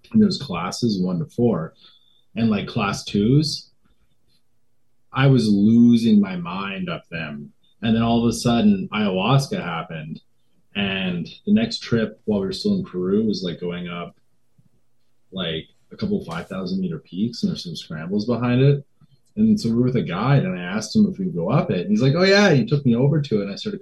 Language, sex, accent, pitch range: English, male, American, 115-190 Hz